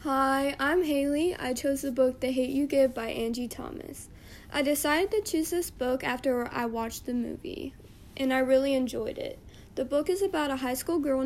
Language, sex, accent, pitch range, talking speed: English, female, American, 250-300 Hz, 205 wpm